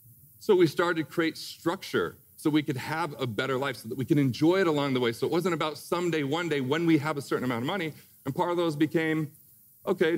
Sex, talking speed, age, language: male, 255 wpm, 40-59, English